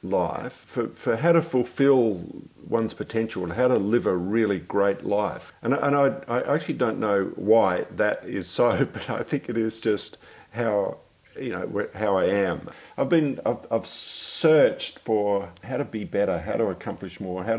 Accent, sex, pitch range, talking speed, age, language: Australian, male, 90-115 Hz, 185 wpm, 50-69, English